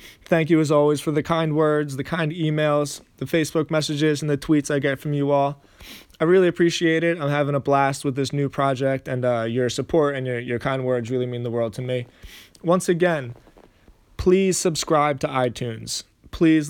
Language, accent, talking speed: English, American, 200 wpm